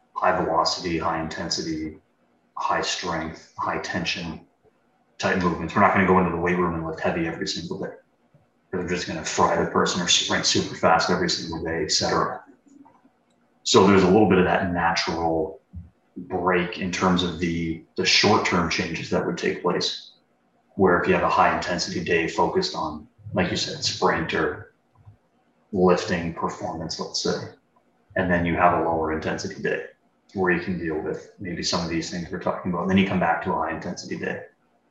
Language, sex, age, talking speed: English, male, 30-49, 185 wpm